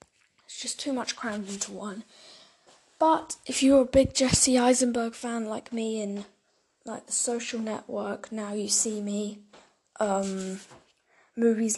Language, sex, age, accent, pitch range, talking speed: English, female, 10-29, British, 210-270 Hz, 145 wpm